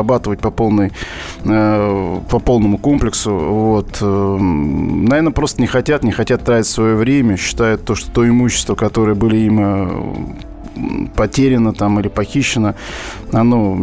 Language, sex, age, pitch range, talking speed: Russian, male, 20-39, 105-125 Hz, 130 wpm